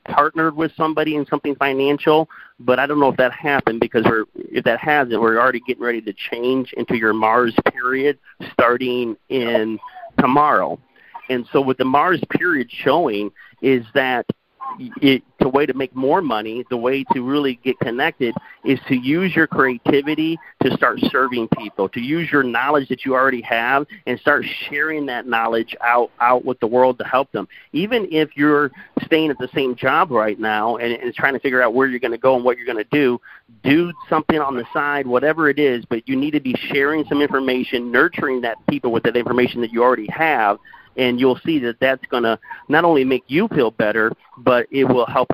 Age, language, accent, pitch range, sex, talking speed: 40-59, English, American, 125-150 Hz, male, 200 wpm